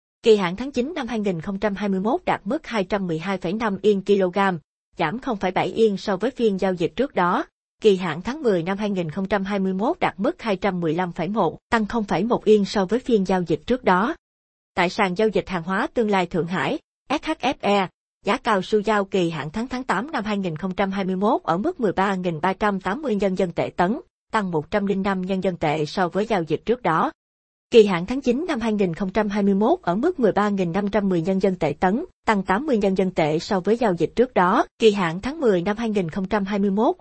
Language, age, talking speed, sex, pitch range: Vietnamese, 20-39, 175 wpm, female, 185-225 Hz